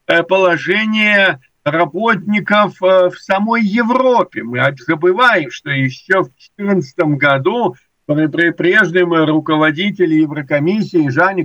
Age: 50-69